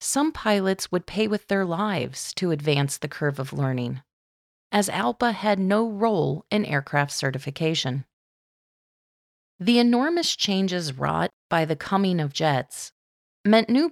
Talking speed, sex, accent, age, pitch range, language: 140 wpm, female, American, 30-49, 150-225 Hz, English